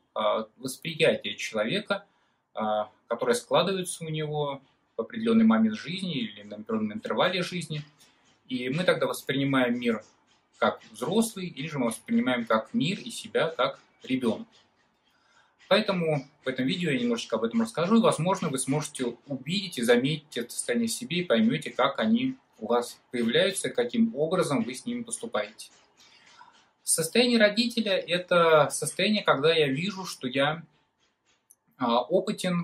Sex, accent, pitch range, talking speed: male, native, 130-195 Hz, 135 wpm